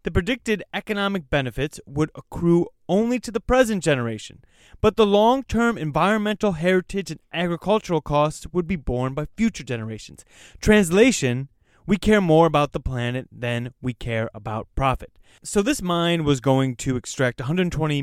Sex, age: male, 20-39